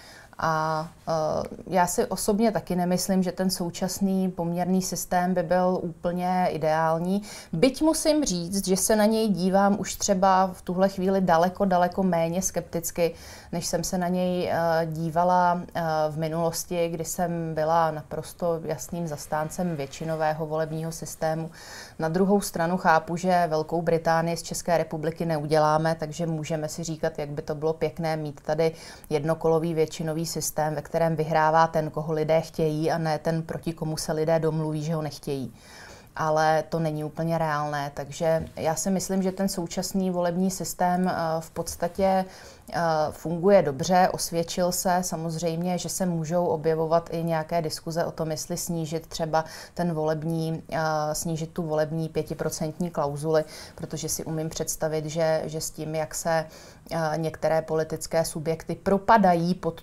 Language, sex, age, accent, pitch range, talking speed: Czech, female, 30-49, native, 155-175 Hz, 145 wpm